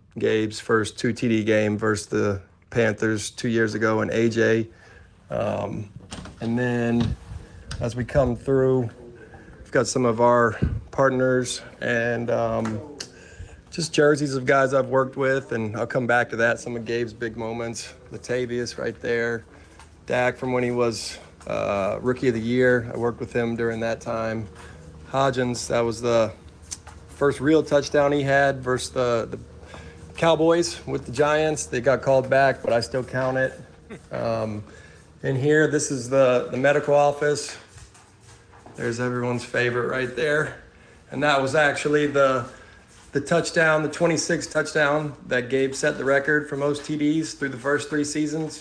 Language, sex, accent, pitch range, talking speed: English, male, American, 115-135 Hz, 155 wpm